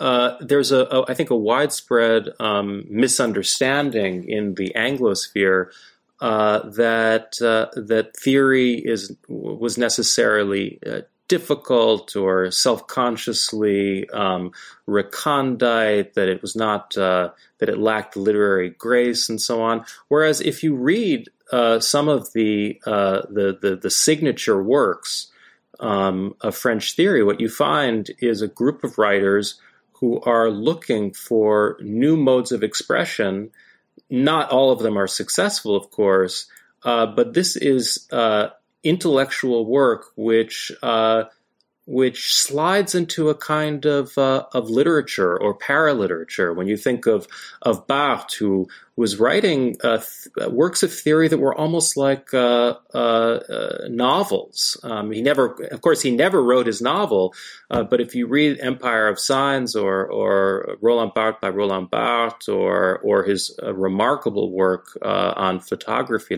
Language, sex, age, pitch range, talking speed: English, male, 30-49, 100-135 Hz, 145 wpm